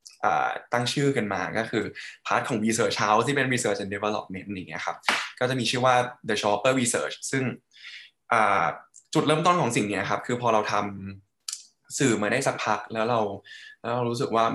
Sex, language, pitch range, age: male, English, 110-140 Hz, 10-29